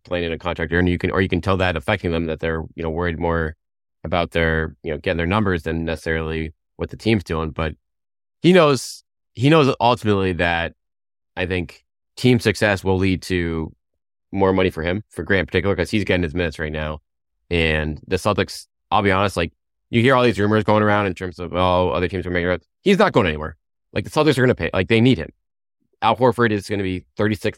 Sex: male